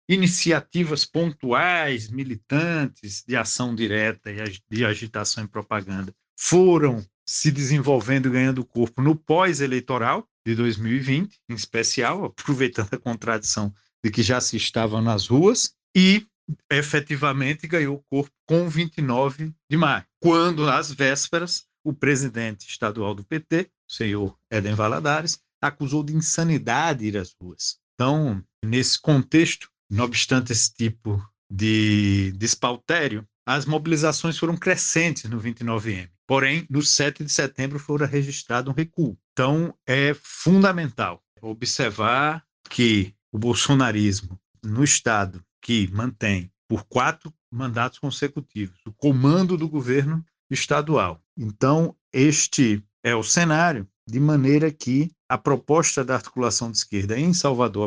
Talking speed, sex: 125 wpm, male